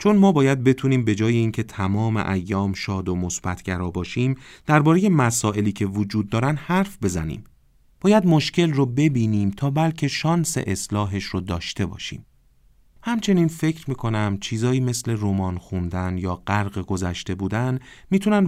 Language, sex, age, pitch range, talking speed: Persian, male, 40-59, 95-135 Hz, 135 wpm